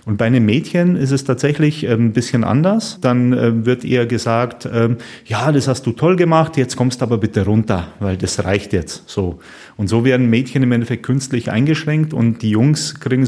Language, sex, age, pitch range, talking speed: German, male, 30-49, 115-135 Hz, 190 wpm